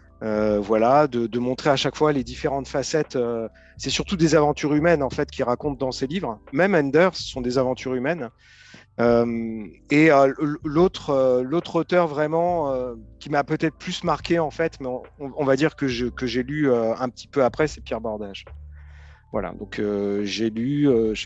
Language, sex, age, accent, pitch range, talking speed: French, male, 40-59, French, 115-155 Hz, 205 wpm